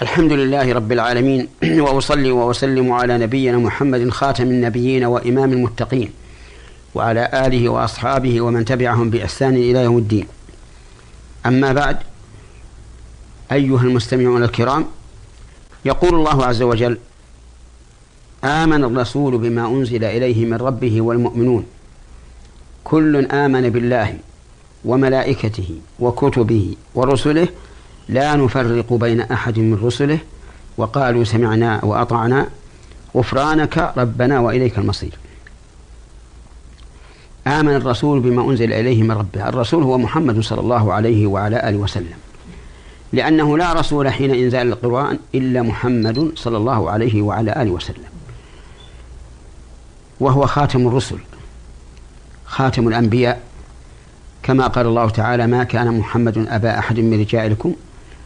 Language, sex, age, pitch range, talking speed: Arabic, male, 50-69, 100-130 Hz, 105 wpm